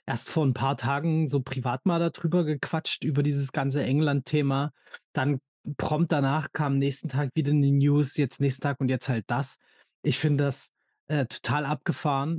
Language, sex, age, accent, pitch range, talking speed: German, male, 20-39, German, 130-155 Hz, 175 wpm